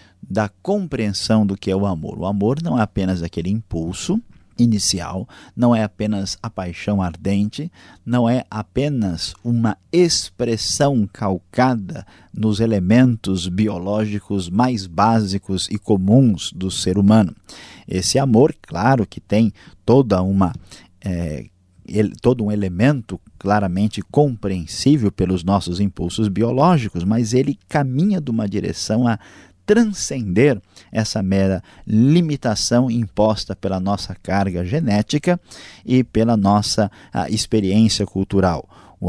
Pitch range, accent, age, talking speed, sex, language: 95-125 Hz, Brazilian, 50-69, 120 wpm, male, Portuguese